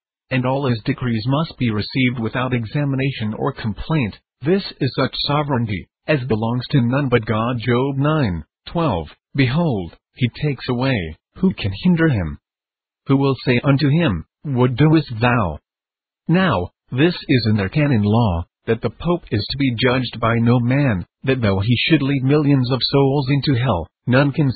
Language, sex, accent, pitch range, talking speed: English, male, American, 115-140 Hz, 170 wpm